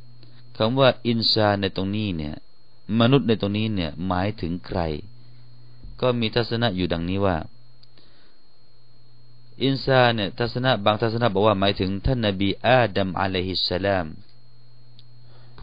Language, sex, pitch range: Thai, male, 95-120 Hz